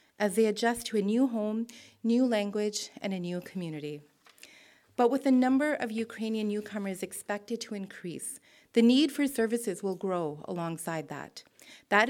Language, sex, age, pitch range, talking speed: English, female, 40-59, 185-240 Hz, 160 wpm